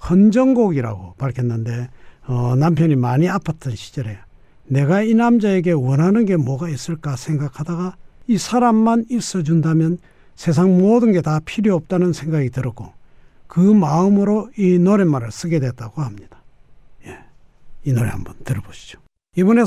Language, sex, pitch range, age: Korean, male, 135-210 Hz, 60-79